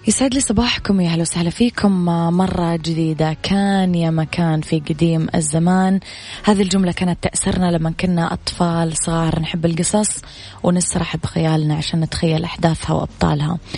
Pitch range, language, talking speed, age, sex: 160-180 Hz, Arabic, 135 wpm, 20-39, female